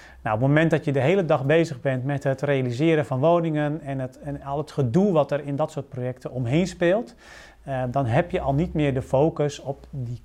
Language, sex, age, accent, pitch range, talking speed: Dutch, male, 40-59, Dutch, 125-155 Hz, 230 wpm